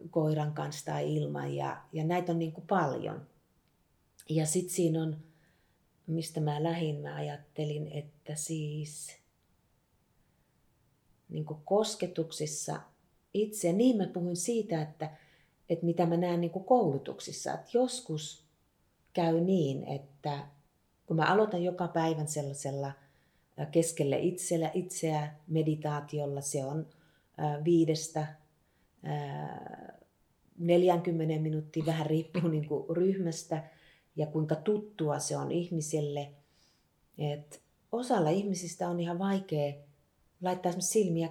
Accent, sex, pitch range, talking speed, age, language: native, female, 150-175 Hz, 110 wpm, 30-49, Finnish